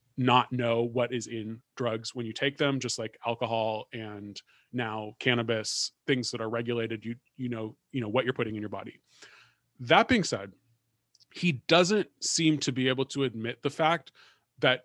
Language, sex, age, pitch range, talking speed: English, male, 30-49, 120-160 Hz, 180 wpm